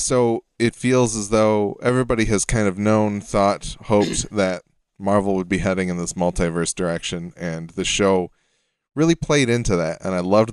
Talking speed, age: 175 wpm, 20-39